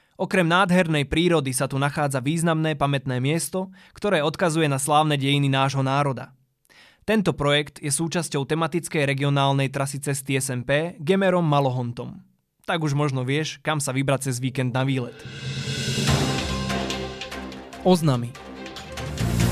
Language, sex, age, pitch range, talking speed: Slovak, male, 20-39, 135-170 Hz, 120 wpm